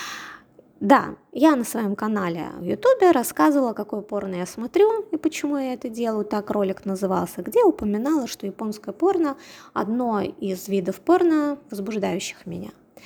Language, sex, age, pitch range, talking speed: Russian, female, 20-39, 205-300 Hz, 145 wpm